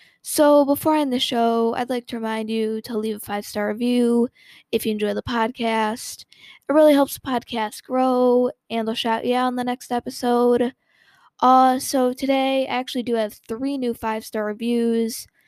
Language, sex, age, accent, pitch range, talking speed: English, female, 10-29, American, 225-255 Hz, 185 wpm